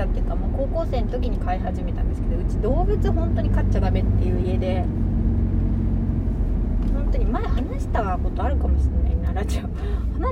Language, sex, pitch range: Japanese, female, 70-105 Hz